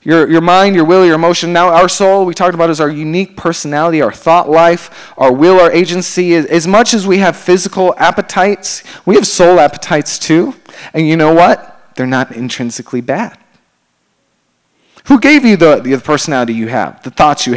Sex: male